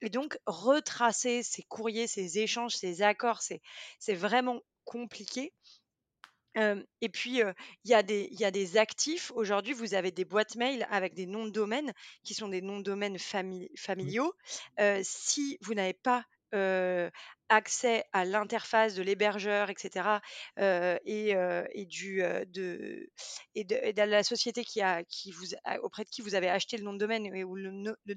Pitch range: 195-240 Hz